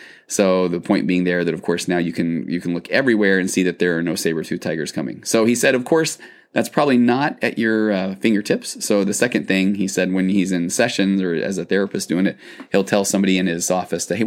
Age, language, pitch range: 20-39, English, 95-115 Hz